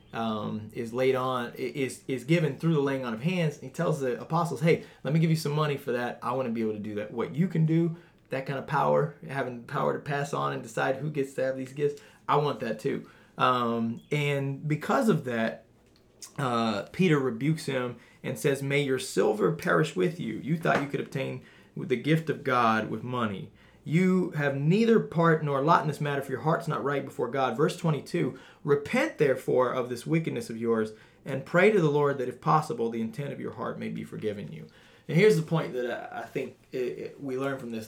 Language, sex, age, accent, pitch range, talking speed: English, male, 30-49, American, 120-155 Hz, 225 wpm